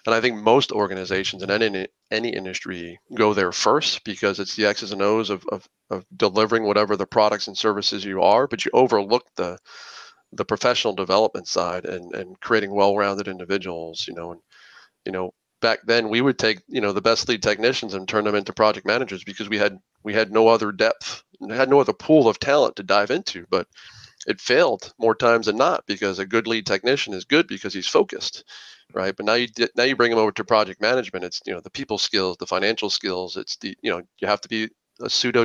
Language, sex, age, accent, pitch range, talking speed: English, male, 40-59, American, 95-115 Hz, 220 wpm